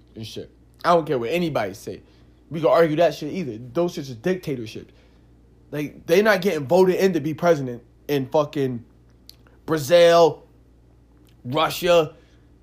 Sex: male